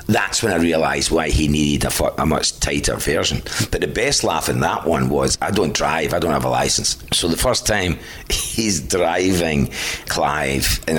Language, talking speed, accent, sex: English, 190 wpm, British, male